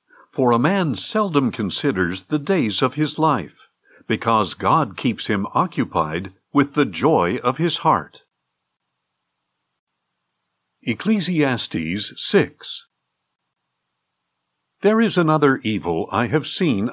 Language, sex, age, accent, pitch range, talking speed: English, male, 60-79, American, 105-155 Hz, 105 wpm